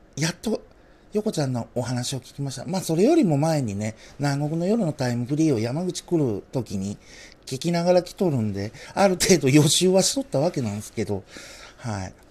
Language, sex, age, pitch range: Japanese, male, 50-69, 110-155 Hz